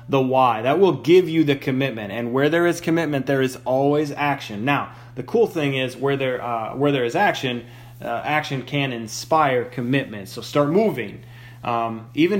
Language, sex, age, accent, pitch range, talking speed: English, male, 30-49, American, 120-155 Hz, 190 wpm